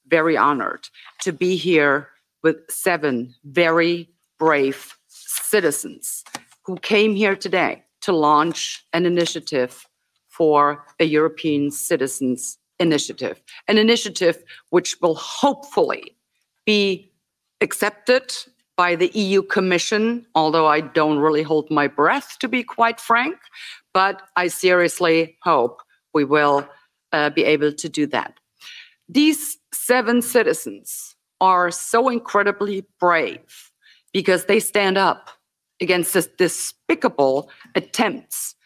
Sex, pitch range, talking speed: female, 160-225 Hz, 110 wpm